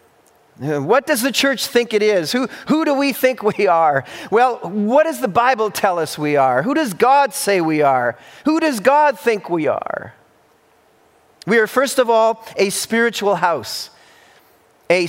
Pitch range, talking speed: 190-245 Hz, 175 wpm